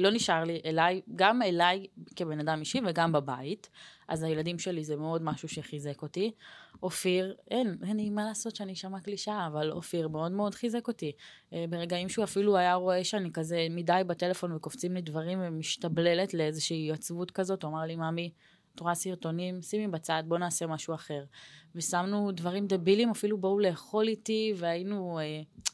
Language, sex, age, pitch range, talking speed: Hebrew, female, 20-39, 160-195 Hz, 170 wpm